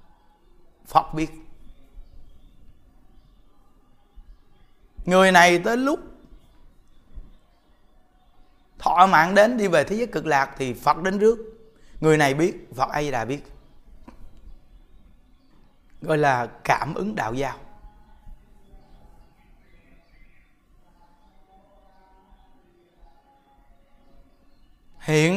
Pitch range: 145-215 Hz